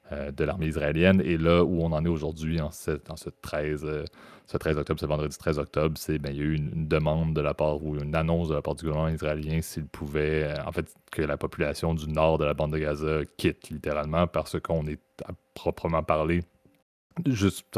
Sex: male